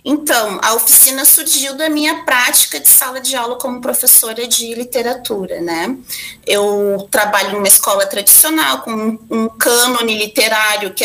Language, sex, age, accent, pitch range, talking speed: Portuguese, female, 30-49, Brazilian, 210-280 Hz, 145 wpm